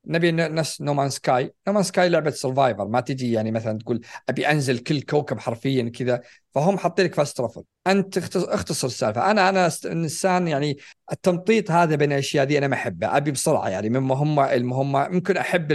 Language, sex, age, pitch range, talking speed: Arabic, male, 50-69, 120-170 Hz, 170 wpm